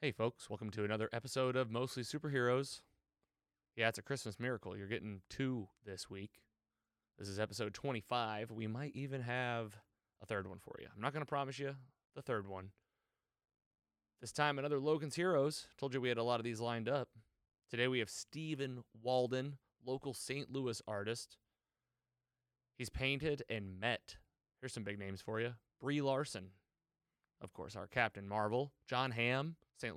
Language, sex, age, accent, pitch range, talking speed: English, male, 30-49, American, 110-130 Hz, 170 wpm